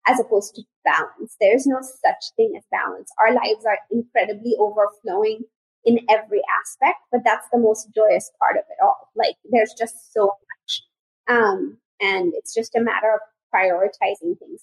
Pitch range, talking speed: 215-325 Hz, 170 wpm